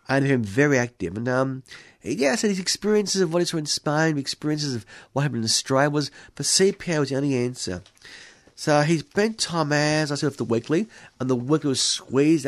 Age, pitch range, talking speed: 40-59, 120-170 Hz, 220 wpm